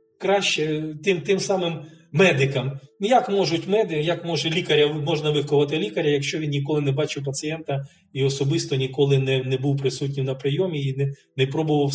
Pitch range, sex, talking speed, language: 135-170 Hz, male, 165 wpm, Ukrainian